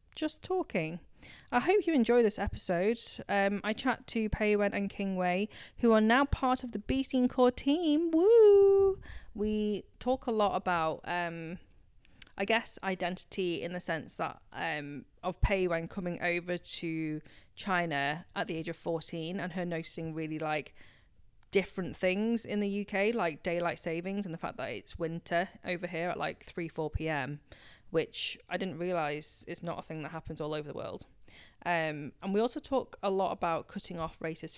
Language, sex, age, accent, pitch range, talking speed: English, female, 20-39, British, 160-200 Hz, 180 wpm